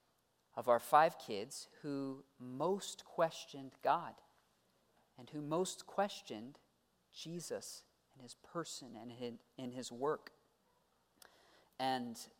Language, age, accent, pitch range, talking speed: English, 40-59, American, 135-180 Hz, 100 wpm